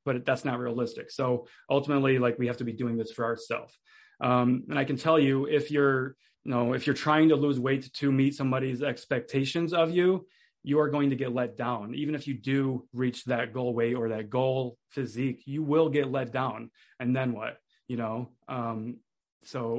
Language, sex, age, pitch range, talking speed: English, male, 20-39, 120-140 Hz, 205 wpm